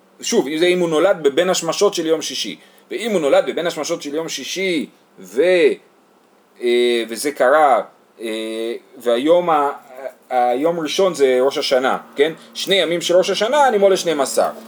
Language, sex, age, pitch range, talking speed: Hebrew, male, 30-49, 130-170 Hz, 130 wpm